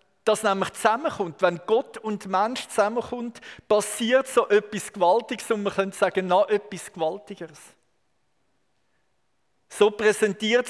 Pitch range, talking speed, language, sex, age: 190-230 Hz, 120 wpm, German, male, 50-69